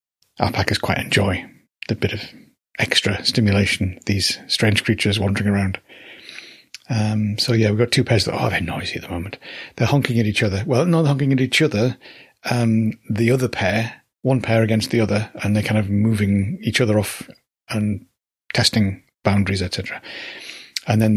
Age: 30-49